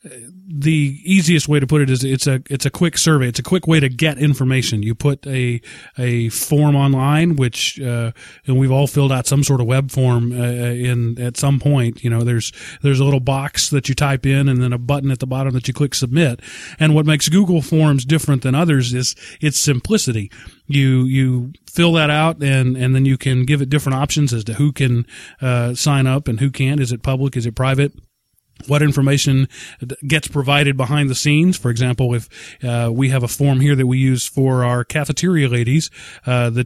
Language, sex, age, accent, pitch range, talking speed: English, male, 30-49, American, 125-145 Hz, 215 wpm